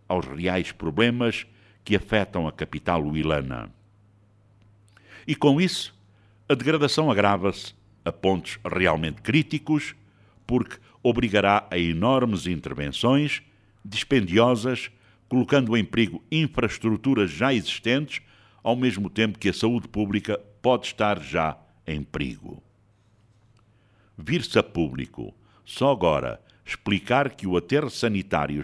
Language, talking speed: Portuguese, 110 wpm